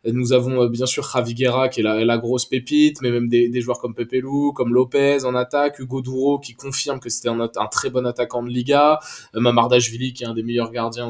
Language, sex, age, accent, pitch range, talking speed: French, male, 20-39, French, 115-140 Hz, 245 wpm